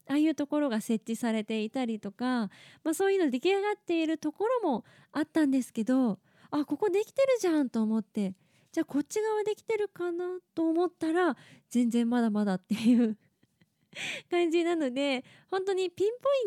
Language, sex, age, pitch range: Japanese, female, 20-39, 210-325 Hz